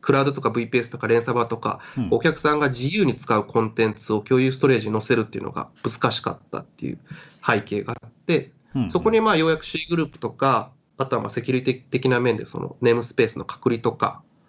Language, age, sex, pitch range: Japanese, 20-39, male, 115-155 Hz